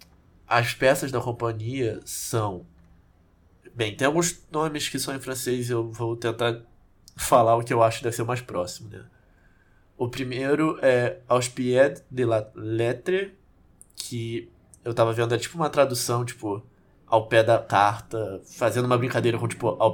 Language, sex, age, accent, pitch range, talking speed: Portuguese, male, 20-39, Brazilian, 110-130 Hz, 165 wpm